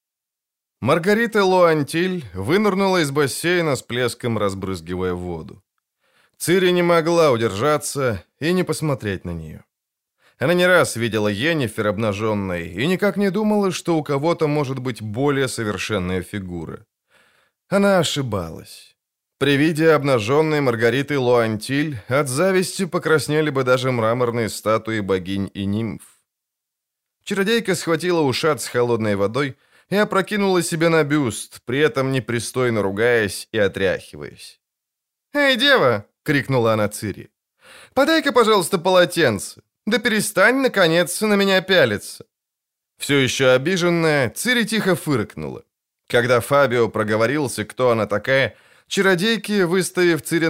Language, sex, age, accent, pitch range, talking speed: Ukrainian, male, 20-39, native, 115-175 Hz, 120 wpm